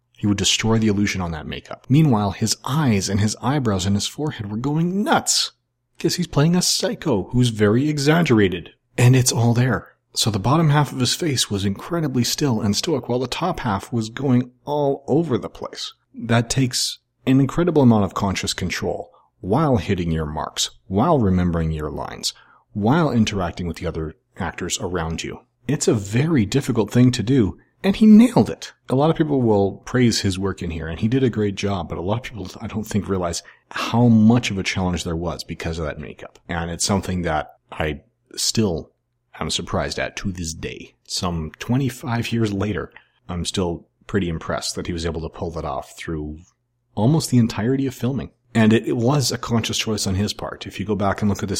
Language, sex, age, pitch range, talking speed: English, male, 40-59, 95-125 Hz, 205 wpm